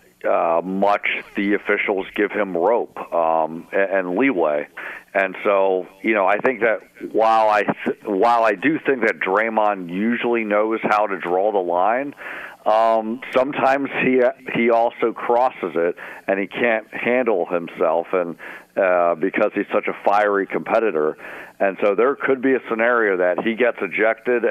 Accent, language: American, English